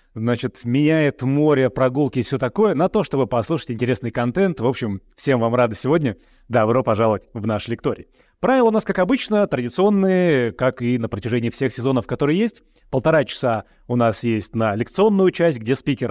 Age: 30-49